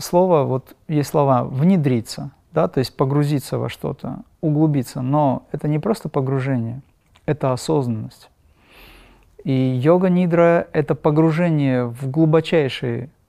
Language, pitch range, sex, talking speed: Russian, 125-155 Hz, male, 115 wpm